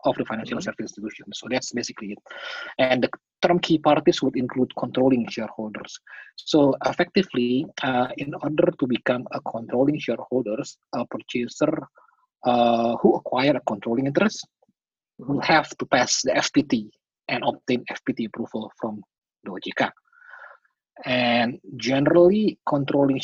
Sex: male